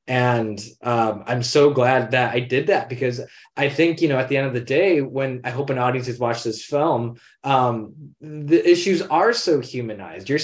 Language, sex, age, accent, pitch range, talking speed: English, male, 20-39, American, 120-150 Hz, 205 wpm